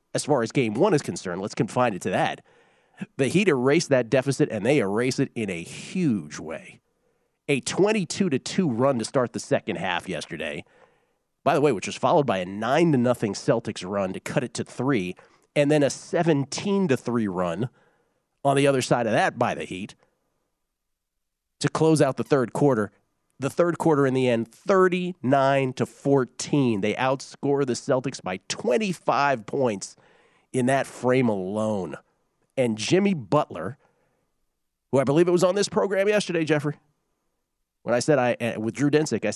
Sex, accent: male, American